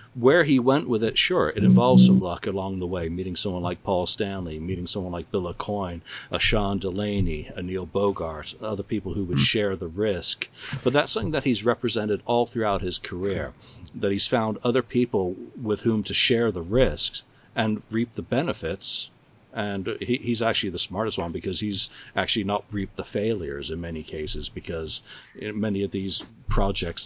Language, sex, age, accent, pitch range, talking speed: English, male, 60-79, American, 95-115 Hz, 180 wpm